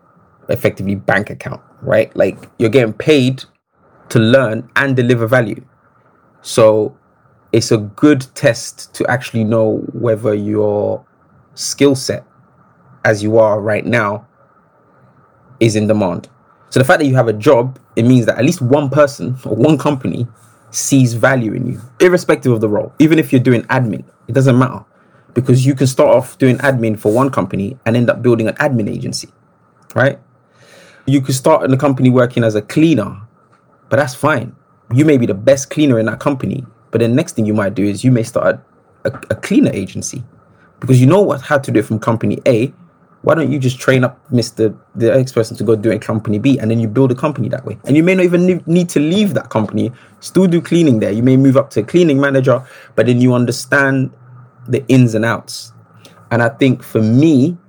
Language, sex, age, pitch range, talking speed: English, male, 20-39, 110-140 Hz, 200 wpm